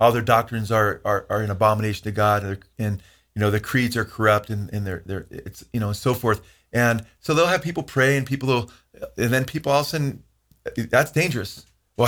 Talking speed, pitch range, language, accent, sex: 230 wpm, 110-135 Hz, English, American, male